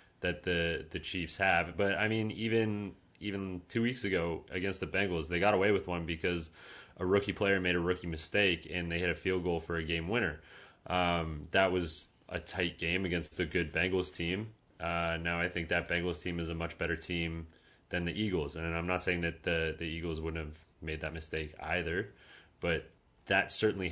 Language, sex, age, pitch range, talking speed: English, male, 30-49, 85-95 Hz, 205 wpm